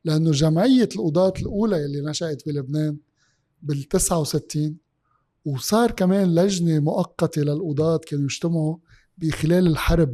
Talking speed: 105 wpm